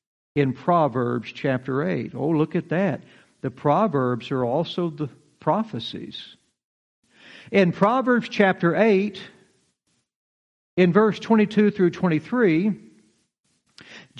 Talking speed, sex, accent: 95 wpm, male, American